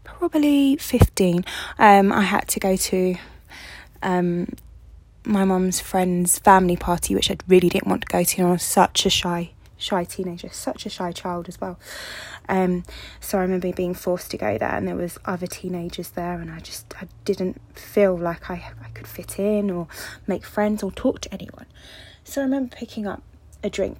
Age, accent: 20-39, British